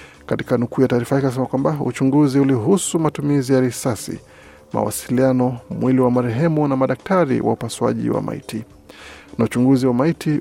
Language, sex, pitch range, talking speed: Swahili, male, 120-145 Hz, 155 wpm